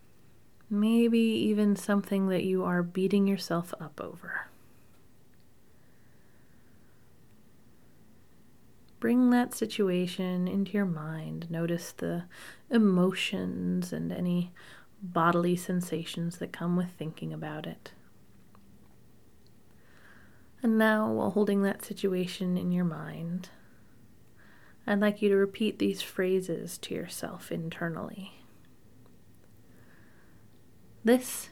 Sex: female